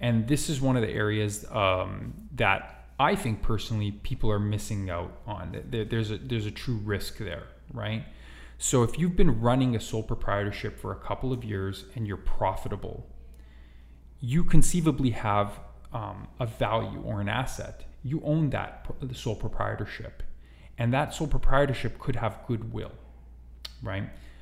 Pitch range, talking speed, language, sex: 95-115 Hz, 155 wpm, English, male